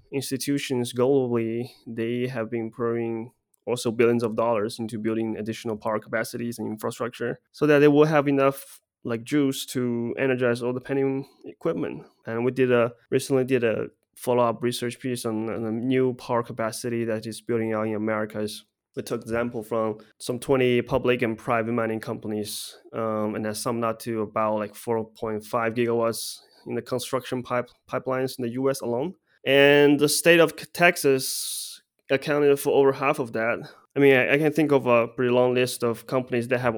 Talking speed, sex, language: 185 wpm, male, English